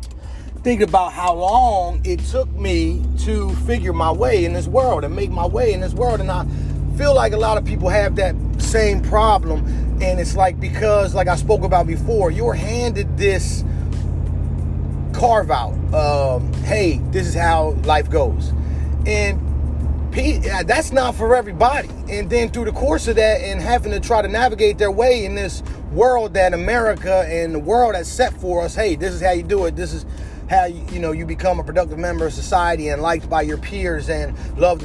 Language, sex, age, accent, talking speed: English, male, 30-49, American, 195 wpm